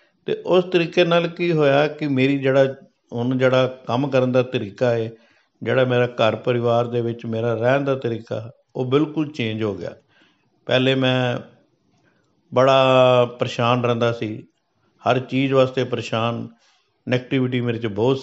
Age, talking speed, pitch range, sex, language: 50-69, 150 wpm, 115-130 Hz, male, Punjabi